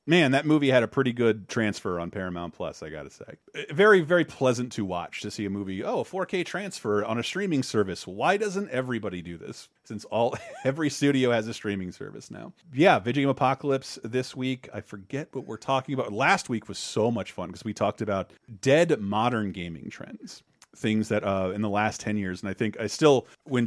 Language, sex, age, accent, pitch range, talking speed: English, male, 30-49, American, 100-135 Hz, 215 wpm